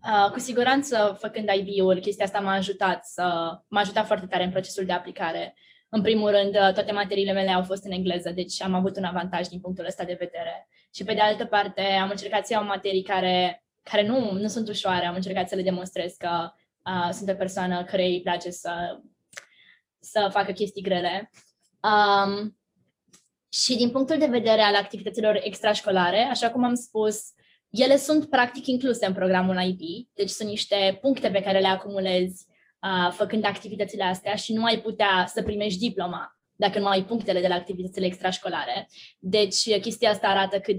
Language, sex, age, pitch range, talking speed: Romanian, female, 20-39, 185-215 Hz, 185 wpm